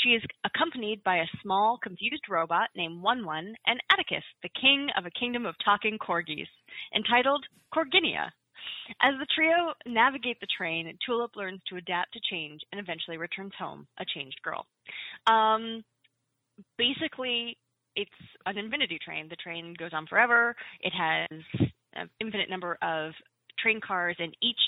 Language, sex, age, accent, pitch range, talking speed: English, female, 20-39, American, 175-235 Hz, 150 wpm